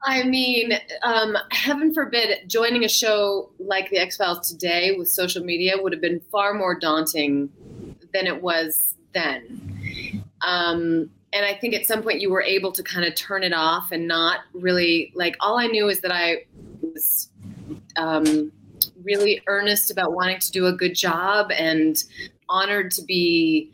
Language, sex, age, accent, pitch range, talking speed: English, female, 30-49, American, 165-205 Hz, 165 wpm